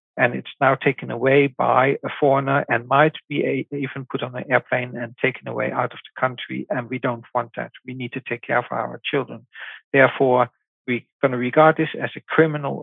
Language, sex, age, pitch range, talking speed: English, male, 60-79, 125-155 Hz, 215 wpm